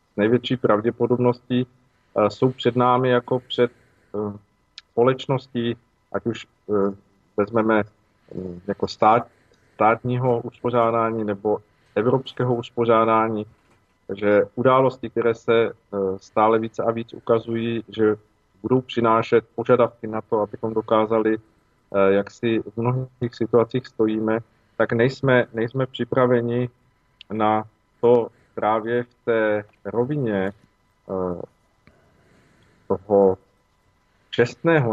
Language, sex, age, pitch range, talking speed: Slovak, male, 40-59, 105-120 Hz, 95 wpm